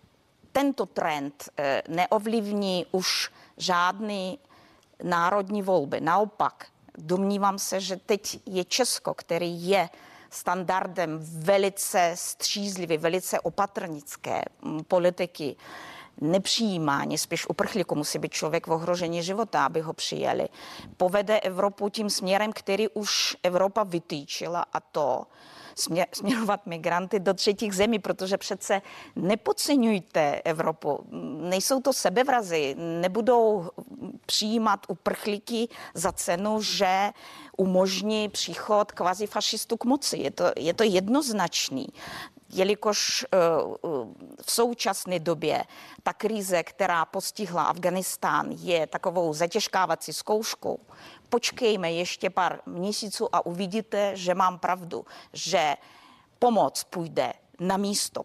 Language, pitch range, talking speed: Czech, 175-215 Hz, 105 wpm